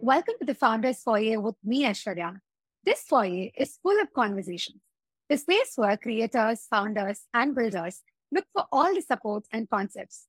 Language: English